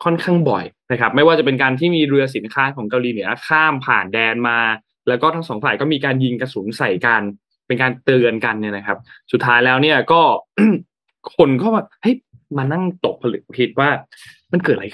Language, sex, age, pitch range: Thai, male, 20-39, 115-165 Hz